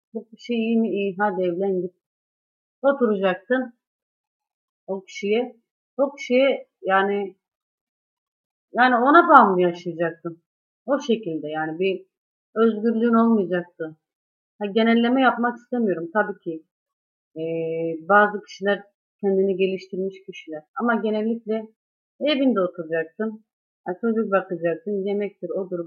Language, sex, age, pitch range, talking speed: Turkish, female, 30-49, 180-230 Hz, 100 wpm